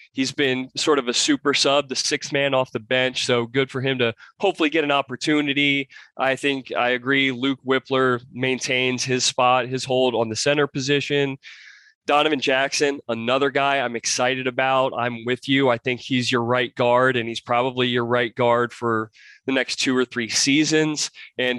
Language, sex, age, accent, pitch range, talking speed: English, male, 20-39, American, 125-150 Hz, 185 wpm